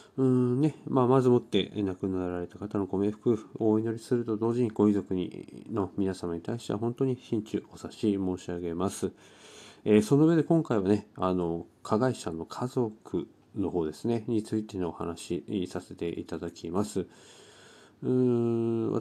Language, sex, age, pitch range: Japanese, male, 40-59, 95-140 Hz